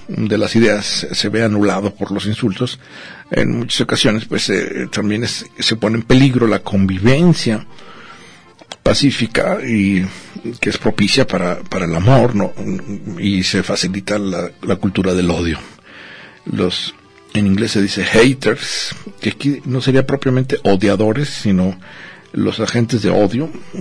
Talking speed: 145 wpm